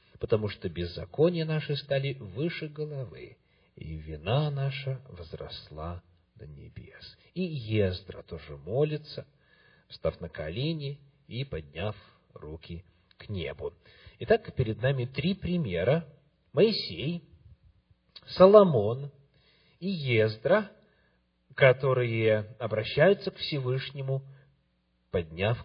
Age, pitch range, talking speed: 40-59, 100-150 Hz, 90 wpm